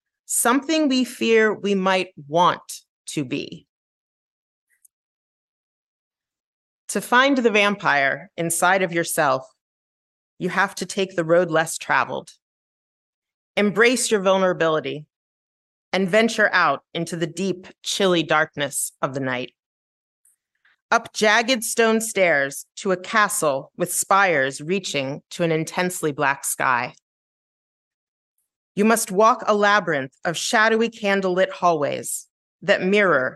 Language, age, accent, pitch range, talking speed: English, 30-49, American, 165-215 Hz, 115 wpm